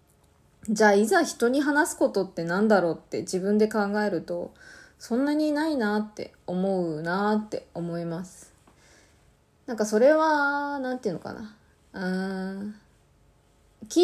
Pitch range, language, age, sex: 165-225 Hz, Japanese, 20-39, female